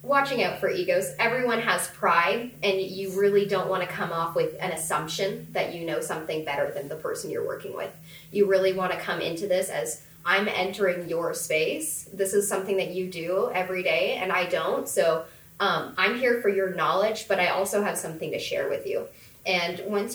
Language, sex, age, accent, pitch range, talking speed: English, female, 10-29, American, 175-250 Hz, 210 wpm